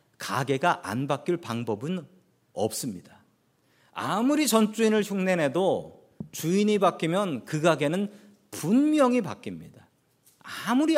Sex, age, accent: male, 40-59, native